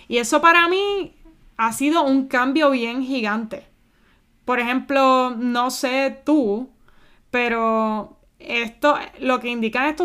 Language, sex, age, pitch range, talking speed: Spanish, female, 20-39, 225-275 Hz, 125 wpm